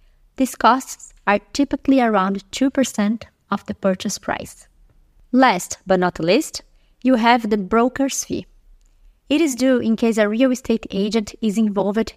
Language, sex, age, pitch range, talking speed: English, female, 20-39, 200-250 Hz, 150 wpm